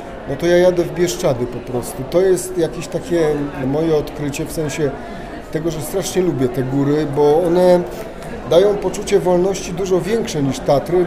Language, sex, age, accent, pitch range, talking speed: Polish, male, 30-49, native, 135-175 Hz, 170 wpm